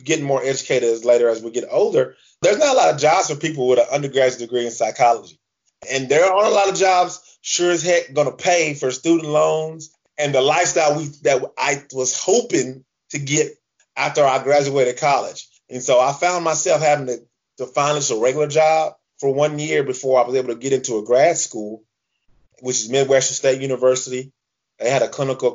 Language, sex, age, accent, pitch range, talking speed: English, male, 30-49, American, 130-165 Hz, 205 wpm